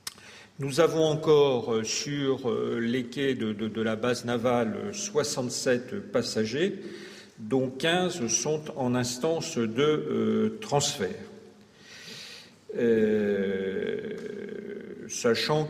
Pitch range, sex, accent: 115-155 Hz, male, French